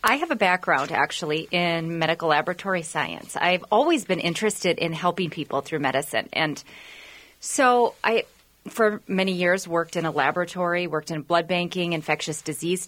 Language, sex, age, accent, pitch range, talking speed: English, female, 30-49, American, 160-200 Hz, 160 wpm